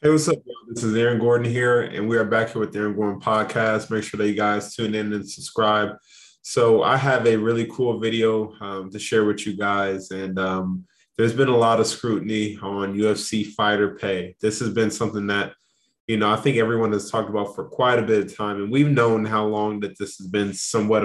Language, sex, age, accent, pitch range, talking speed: English, male, 20-39, American, 100-115 Hz, 230 wpm